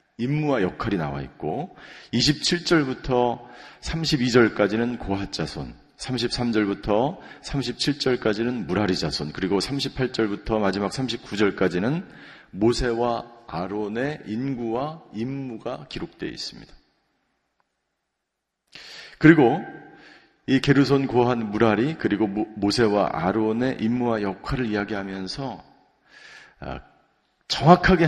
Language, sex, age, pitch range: Korean, male, 40-59, 105-135 Hz